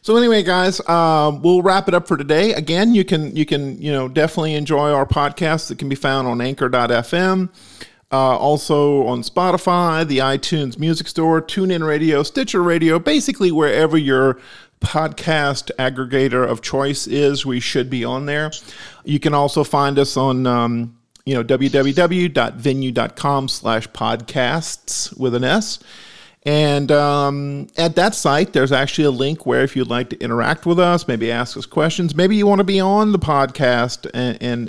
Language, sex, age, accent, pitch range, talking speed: English, male, 50-69, American, 130-165 Hz, 170 wpm